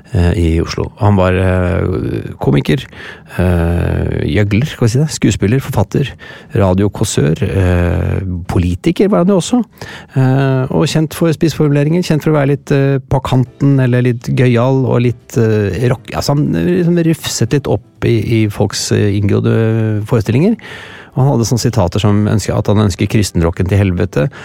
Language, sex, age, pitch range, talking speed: English, male, 30-49, 95-125 Hz, 135 wpm